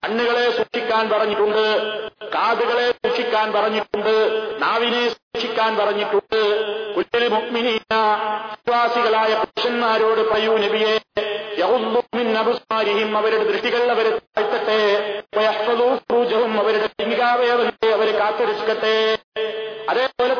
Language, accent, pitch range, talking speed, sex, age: Malayalam, native, 215-240 Hz, 40 wpm, male, 40-59